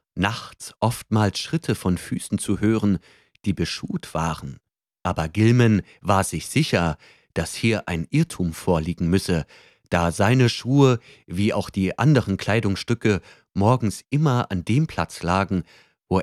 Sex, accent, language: male, German, German